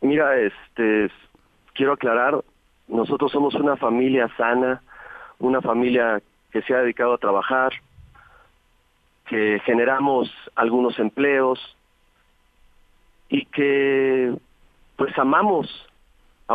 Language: Spanish